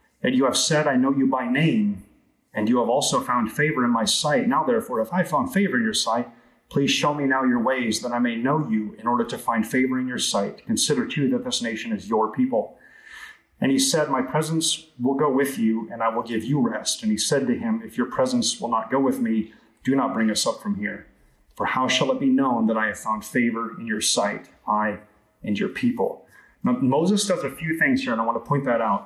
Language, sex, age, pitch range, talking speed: English, male, 30-49, 130-210 Hz, 250 wpm